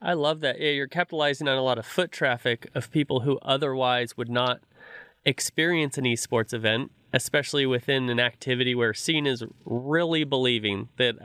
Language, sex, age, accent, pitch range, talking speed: English, male, 30-49, American, 120-140 Hz, 170 wpm